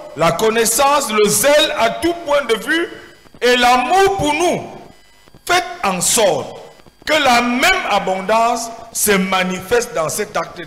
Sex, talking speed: male, 140 wpm